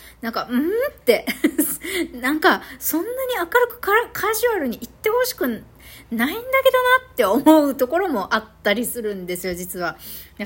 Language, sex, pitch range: Japanese, female, 205-325 Hz